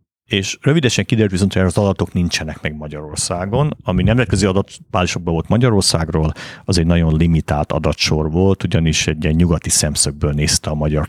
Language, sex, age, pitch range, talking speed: Hungarian, male, 50-69, 80-100 Hz, 155 wpm